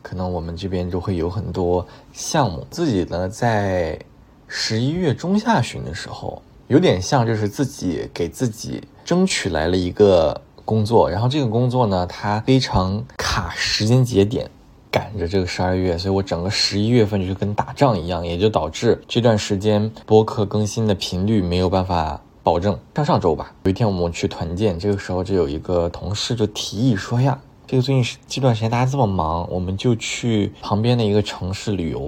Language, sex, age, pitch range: Chinese, male, 20-39, 90-115 Hz